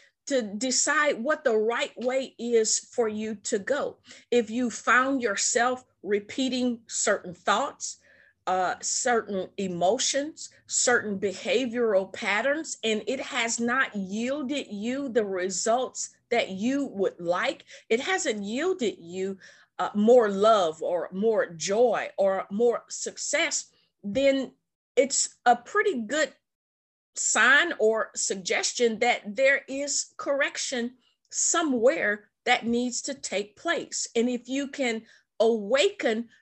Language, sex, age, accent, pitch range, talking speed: English, female, 40-59, American, 215-280 Hz, 120 wpm